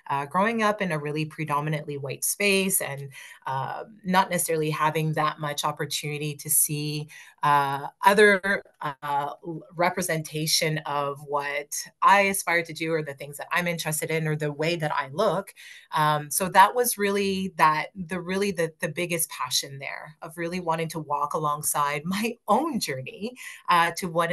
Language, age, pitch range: English, 30-49, 150-175 Hz